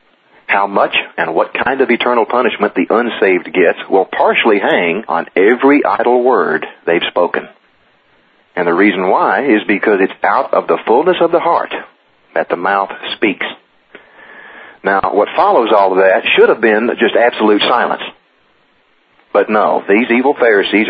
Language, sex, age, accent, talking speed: English, male, 40-59, American, 160 wpm